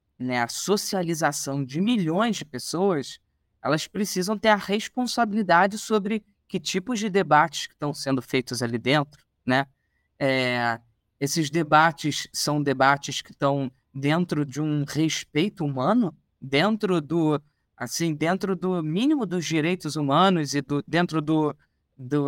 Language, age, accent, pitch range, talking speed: Portuguese, 20-39, Brazilian, 140-190 Hz, 135 wpm